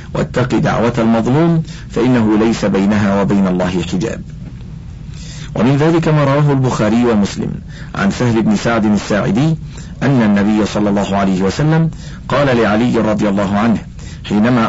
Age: 50-69